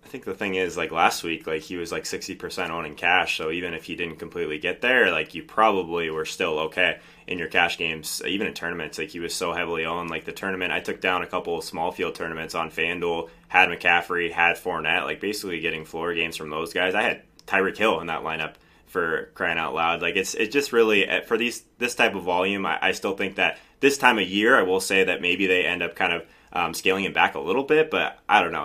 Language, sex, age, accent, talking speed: English, male, 20-39, American, 255 wpm